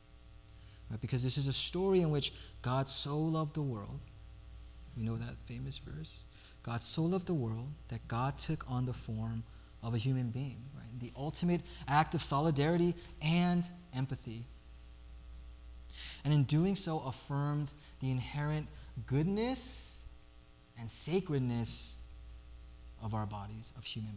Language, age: English, 20-39